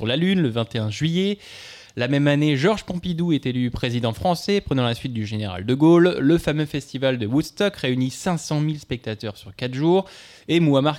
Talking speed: 190 wpm